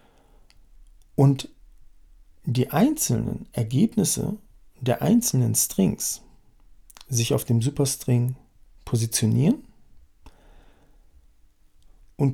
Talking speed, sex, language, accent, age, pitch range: 65 wpm, male, English, German, 50-69, 110-150 Hz